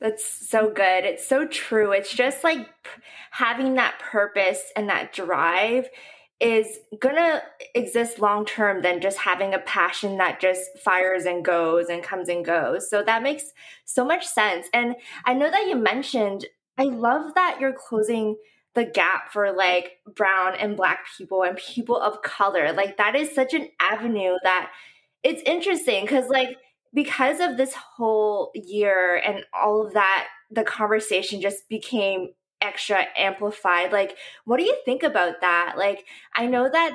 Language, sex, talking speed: English, female, 160 wpm